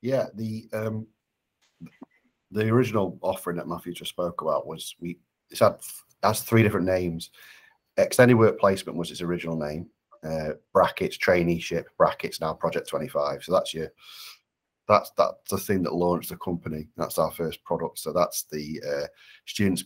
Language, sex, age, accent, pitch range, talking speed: English, male, 30-49, British, 80-90 Hz, 165 wpm